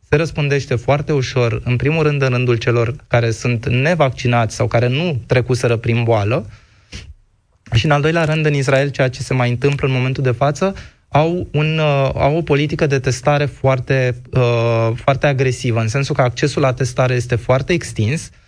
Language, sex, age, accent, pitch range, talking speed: Romanian, male, 20-39, native, 120-145 Hz, 175 wpm